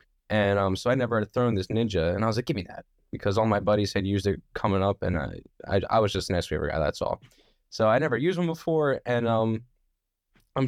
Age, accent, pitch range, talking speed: 10-29, American, 105-165 Hz, 255 wpm